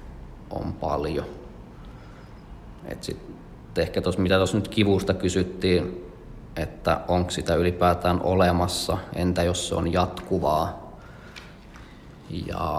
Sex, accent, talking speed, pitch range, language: male, native, 100 wpm, 85-95 Hz, Finnish